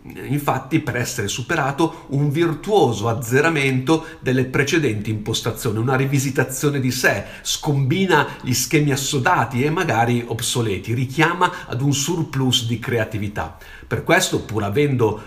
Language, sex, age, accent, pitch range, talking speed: Italian, male, 50-69, native, 110-145 Hz, 120 wpm